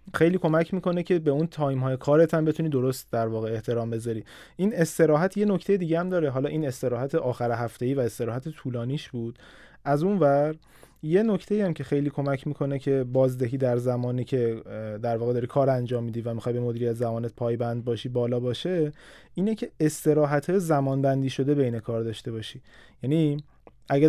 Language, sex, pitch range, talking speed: Persian, male, 120-155 Hz, 180 wpm